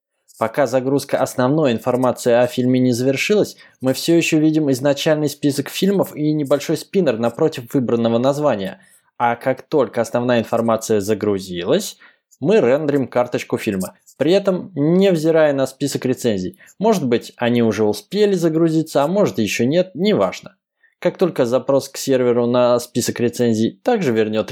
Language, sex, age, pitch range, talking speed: Russian, male, 20-39, 120-155 Hz, 145 wpm